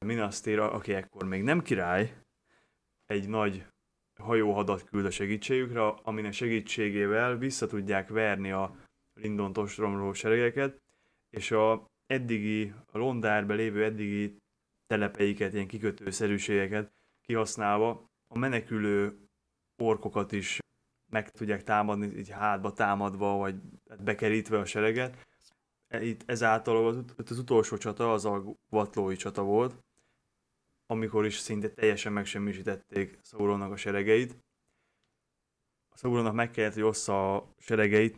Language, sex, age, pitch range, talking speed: Hungarian, male, 20-39, 100-115 Hz, 115 wpm